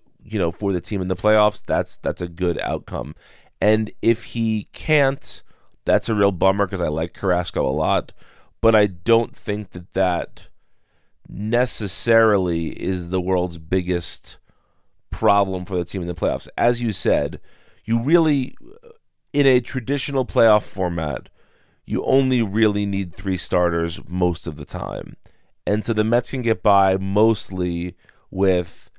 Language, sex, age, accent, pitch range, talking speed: English, male, 40-59, American, 90-110 Hz, 155 wpm